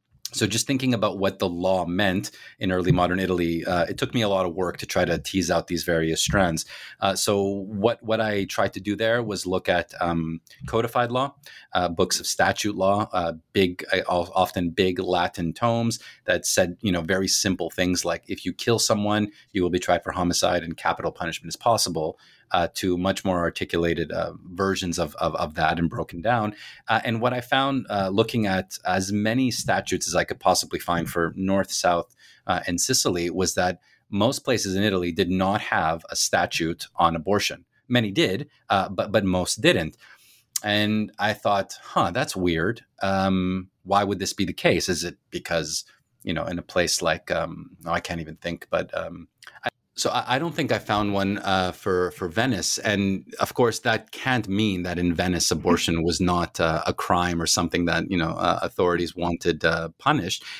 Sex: male